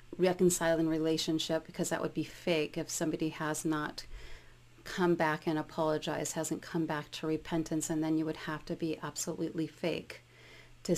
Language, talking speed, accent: English, 165 wpm, American